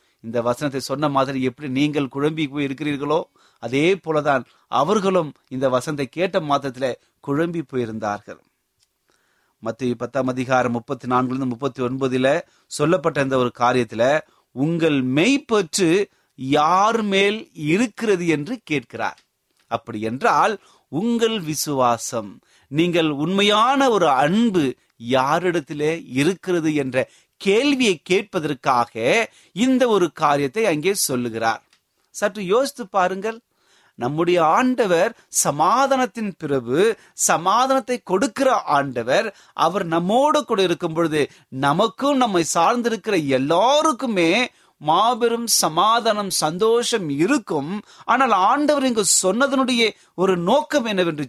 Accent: native